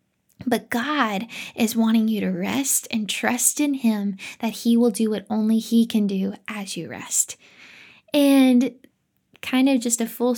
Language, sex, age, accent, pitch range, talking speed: English, female, 10-29, American, 225-275 Hz, 170 wpm